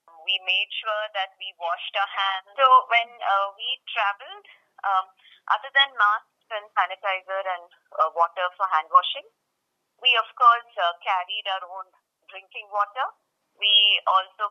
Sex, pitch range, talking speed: female, 175-210 Hz, 150 wpm